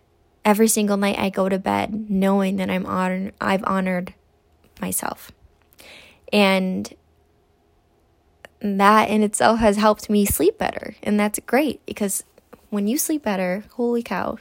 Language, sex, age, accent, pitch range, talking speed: English, female, 10-29, American, 190-225 Hz, 145 wpm